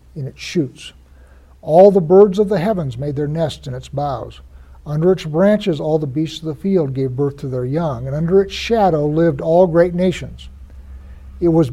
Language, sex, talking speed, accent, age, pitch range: English, male, 200 wpm, American, 60-79, 140-185 Hz